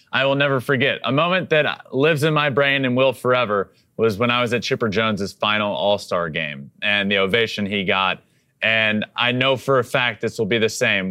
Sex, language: male, English